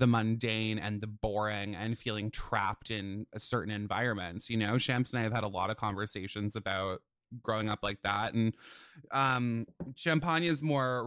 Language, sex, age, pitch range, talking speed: English, male, 20-39, 115-145 Hz, 180 wpm